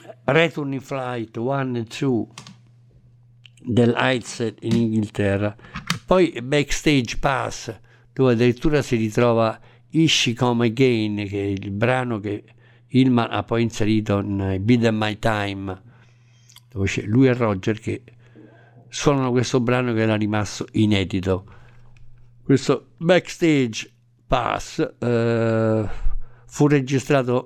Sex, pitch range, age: male, 110-130 Hz, 60-79